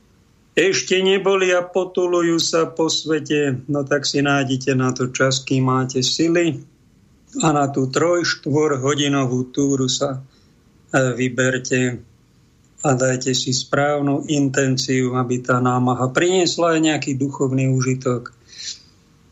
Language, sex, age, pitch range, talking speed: Slovak, male, 50-69, 130-155 Hz, 115 wpm